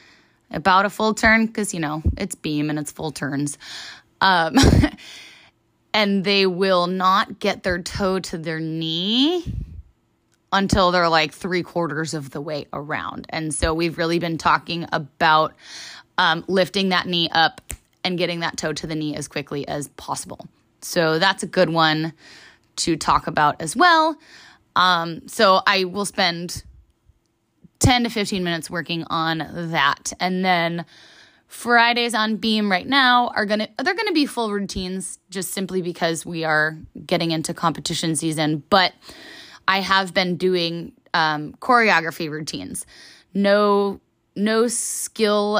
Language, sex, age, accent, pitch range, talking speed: English, female, 20-39, American, 160-200 Hz, 145 wpm